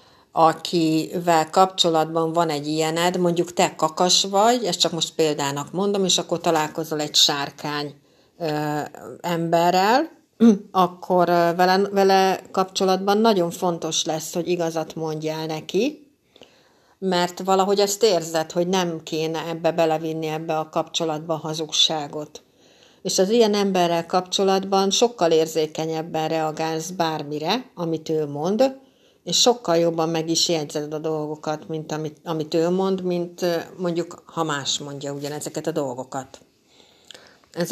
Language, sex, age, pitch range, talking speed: Hungarian, female, 60-79, 155-190 Hz, 120 wpm